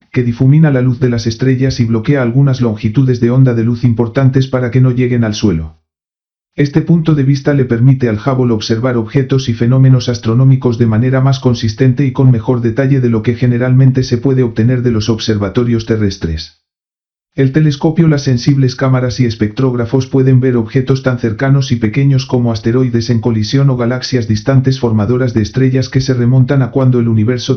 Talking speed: 185 wpm